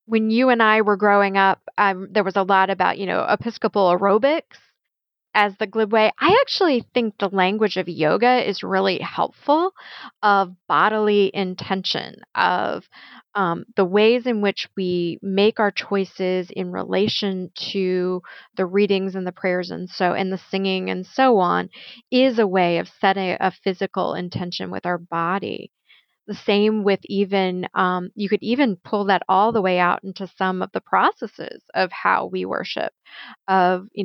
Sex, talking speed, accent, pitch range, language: female, 170 wpm, American, 185-210 Hz, English